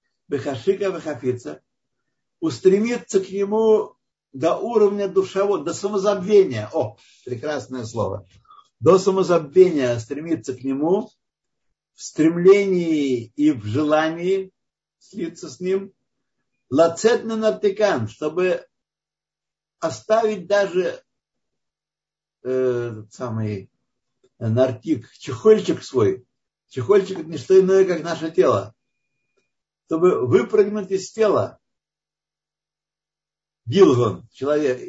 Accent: native